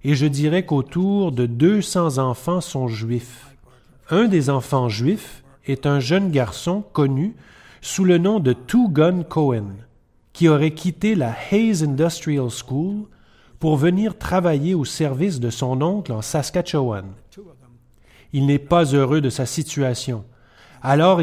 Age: 30-49